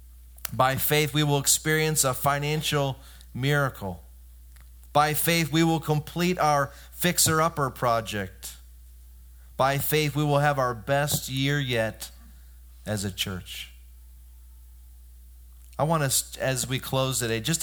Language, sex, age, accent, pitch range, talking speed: English, male, 30-49, American, 100-145 Hz, 125 wpm